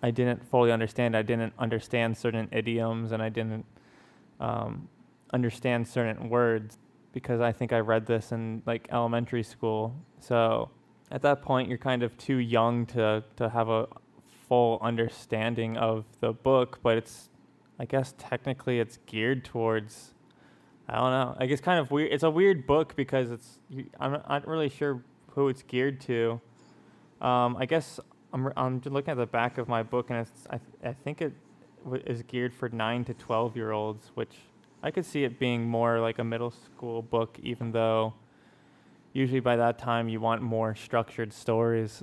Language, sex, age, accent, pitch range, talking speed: English, male, 20-39, American, 115-130 Hz, 185 wpm